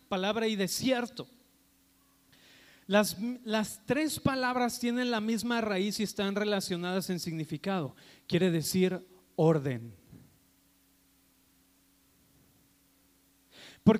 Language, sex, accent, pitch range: Spanish, male, Mexican, 185-240 Hz